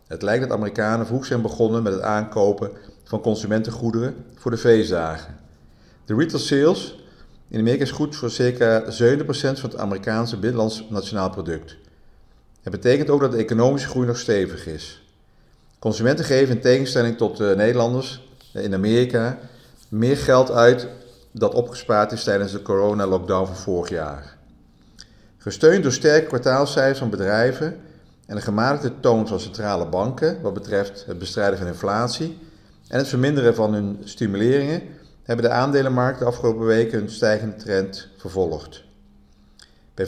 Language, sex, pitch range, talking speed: Dutch, male, 100-125 Hz, 145 wpm